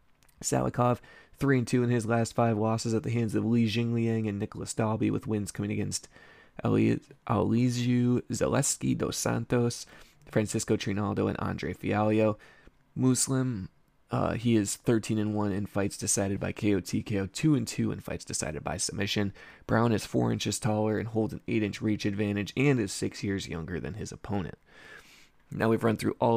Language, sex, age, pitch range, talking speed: English, male, 20-39, 95-115 Hz, 160 wpm